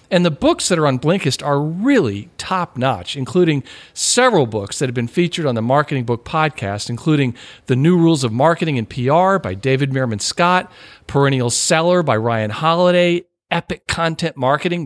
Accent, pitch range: American, 125-175 Hz